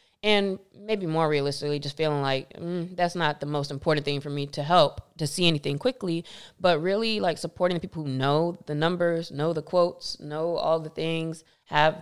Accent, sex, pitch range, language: American, female, 145-175 Hz, English